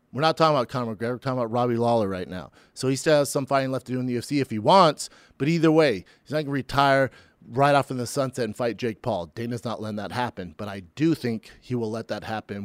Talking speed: 280 wpm